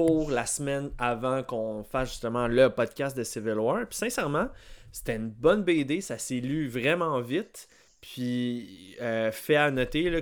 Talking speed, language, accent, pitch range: 170 wpm, French, Canadian, 115-140 Hz